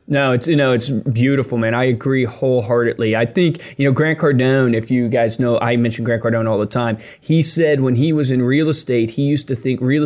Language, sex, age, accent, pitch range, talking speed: English, male, 20-39, American, 120-150 Hz, 240 wpm